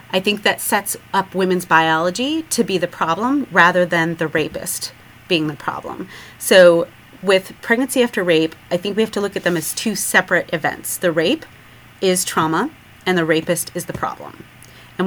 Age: 30-49